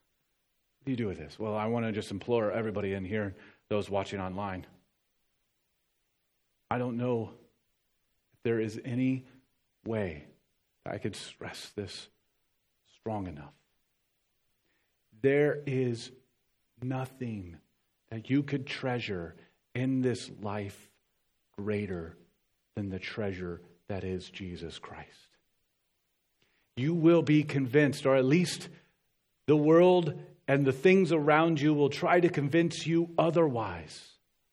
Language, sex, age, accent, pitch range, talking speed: English, male, 40-59, American, 110-180 Hz, 125 wpm